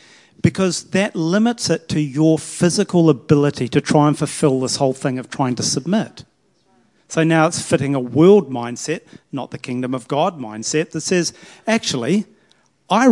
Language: English